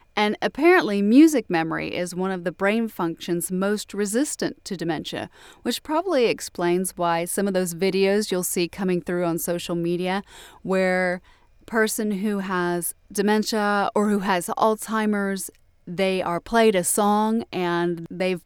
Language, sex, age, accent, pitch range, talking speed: English, female, 30-49, American, 175-215 Hz, 145 wpm